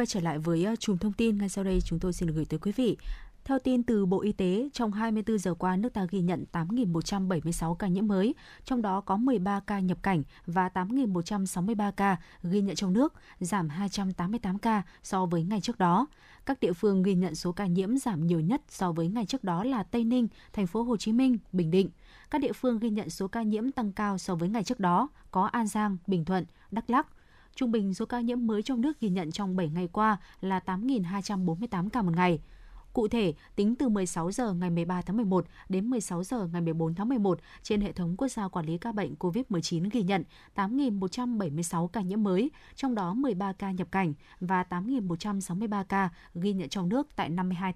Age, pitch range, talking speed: 20-39, 180-230 Hz, 215 wpm